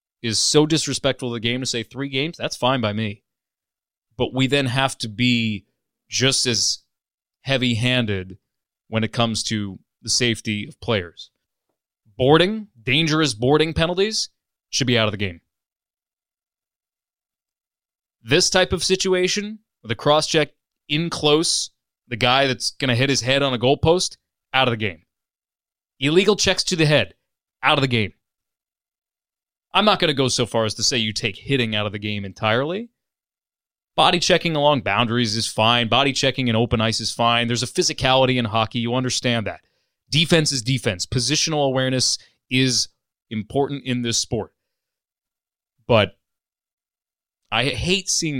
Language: English